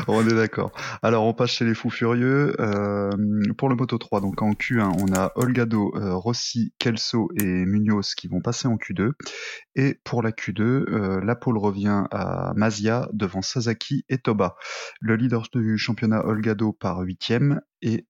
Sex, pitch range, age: male, 105-120 Hz, 20-39